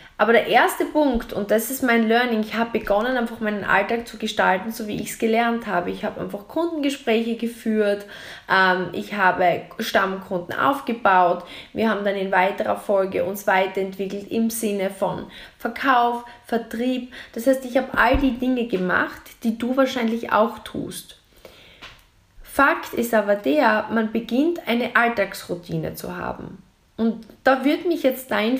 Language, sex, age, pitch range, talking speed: German, female, 20-39, 195-255 Hz, 155 wpm